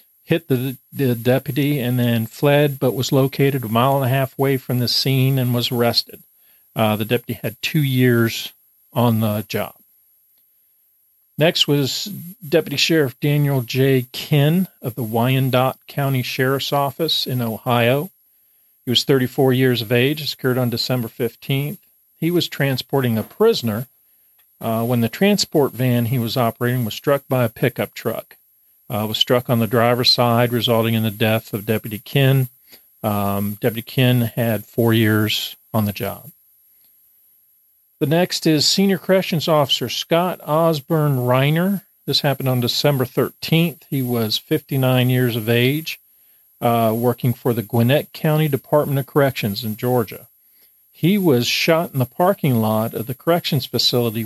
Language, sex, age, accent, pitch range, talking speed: English, male, 40-59, American, 115-145 Hz, 155 wpm